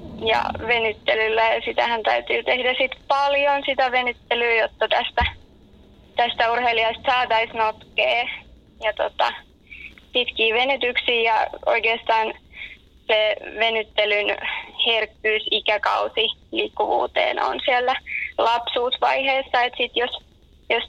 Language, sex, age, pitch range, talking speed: Finnish, female, 20-39, 225-270 Hz, 95 wpm